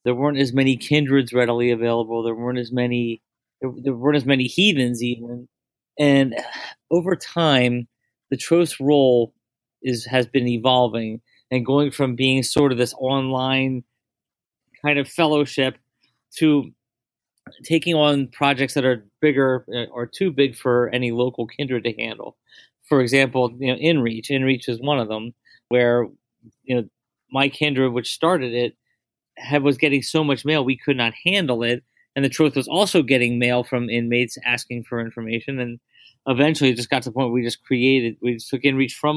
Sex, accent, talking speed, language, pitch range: male, American, 170 wpm, English, 120-140 Hz